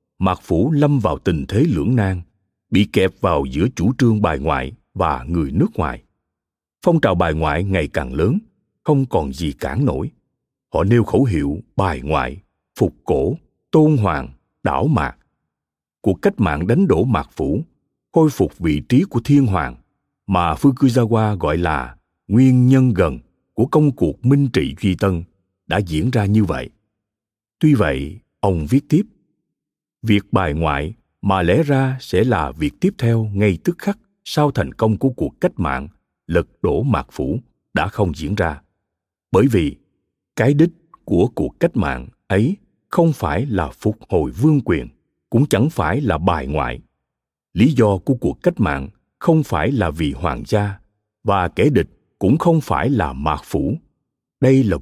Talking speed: 170 wpm